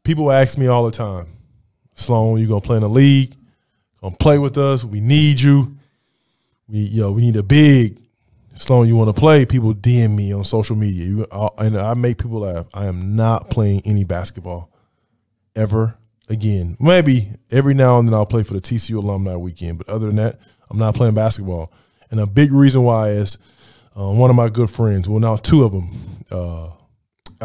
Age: 20-39